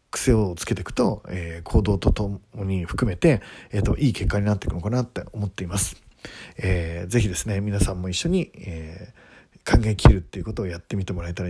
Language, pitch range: Japanese, 90-115 Hz